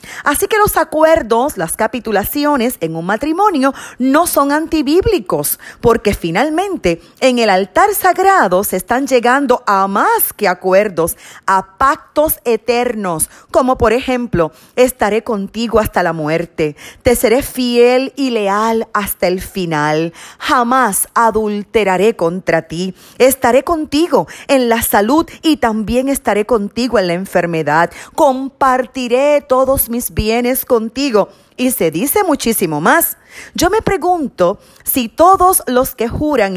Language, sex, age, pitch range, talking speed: Spanish, female, 40-59, 200-285 Hz, 130 wpm